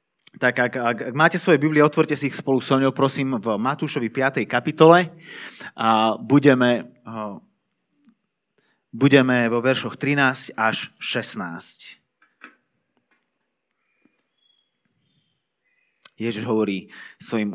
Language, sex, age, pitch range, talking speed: Slovak, male, 30-49, 120-155 Hz, 95 wpm